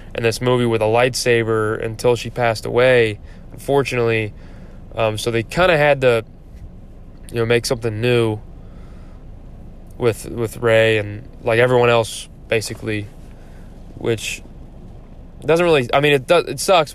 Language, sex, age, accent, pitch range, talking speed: English, male, 10-29, American, 105-125 Hz, 140 wpm